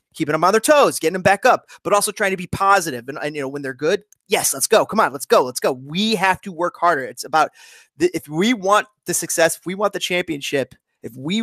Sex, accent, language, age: male, American, English, 30-49